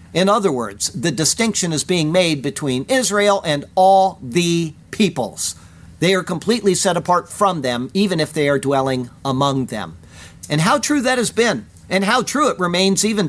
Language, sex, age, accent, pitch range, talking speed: English, male, 50-69, American, 155-210 Hz, 180 wpm